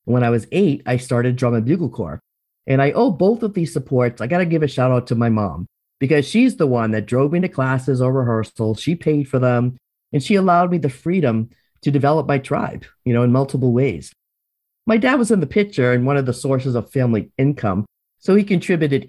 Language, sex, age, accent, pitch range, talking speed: English, male, 40-59, American, 120-165 Hz, 235 wpm